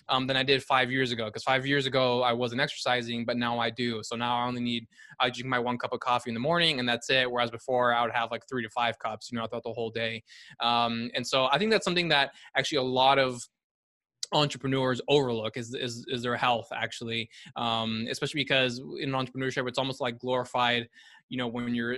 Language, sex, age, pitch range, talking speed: English, male, 20-39, 120-130 Hz, 230 wpm